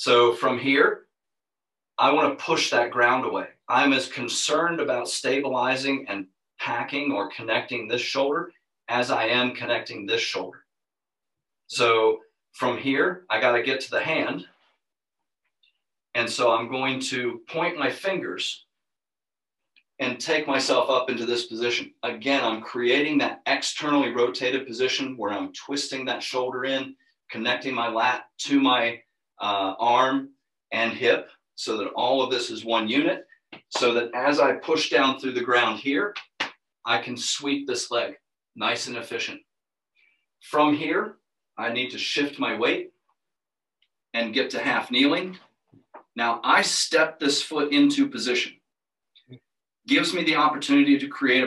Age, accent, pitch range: 40-59, American, 125-200 Hz